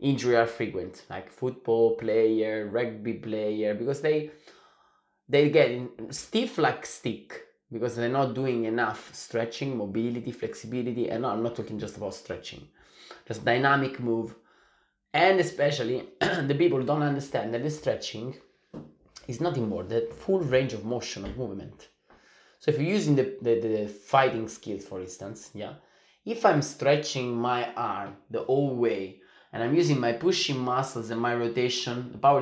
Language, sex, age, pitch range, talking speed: Italian, male, 20-39, 120-160 Hz, 155 wpm